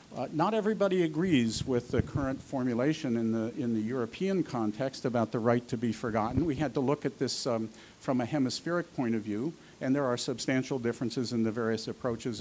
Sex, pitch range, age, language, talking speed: male, 115-140 Hz, 50-69, Portuguese, 205 wpm